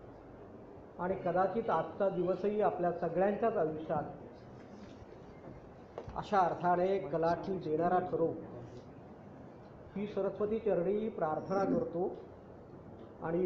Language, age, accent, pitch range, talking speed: Marathi, 40-59, native, 170-220 Hz, 80 wpm